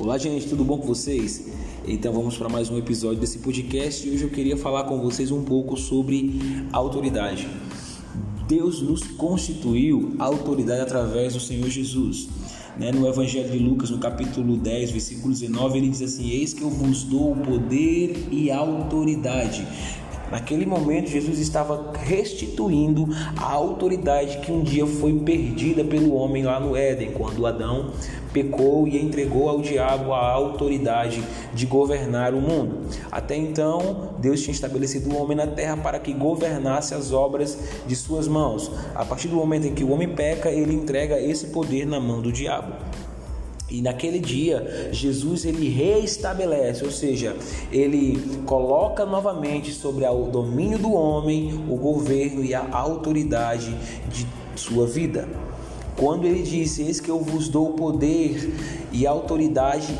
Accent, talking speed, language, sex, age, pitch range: Brazilian, 155 wpm, Portuguese, male, 20-39, 130-155 Hz